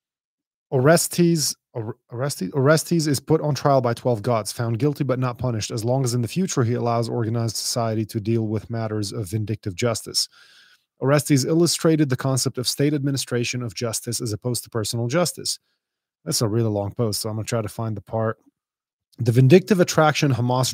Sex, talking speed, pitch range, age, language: male, 185 wpm, 120-145 Hz, 30-49, English